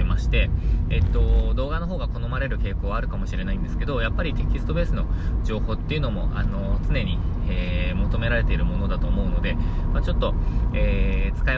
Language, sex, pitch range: Japanese, male, 85-115 Hz